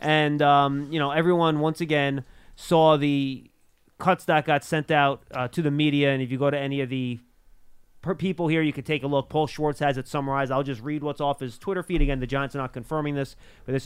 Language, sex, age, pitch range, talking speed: English, male, 30-49, 130-160 Hz, 240 wpm